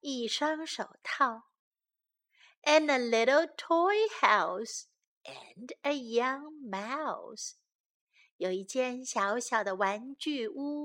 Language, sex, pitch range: Chinese, female, 225-330 Hz